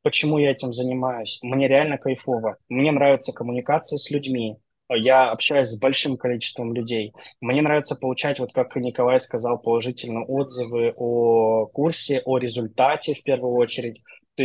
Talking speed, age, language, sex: 145 wpm, 20-39, Russian, male